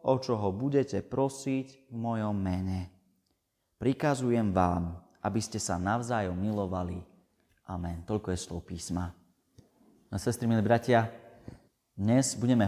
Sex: male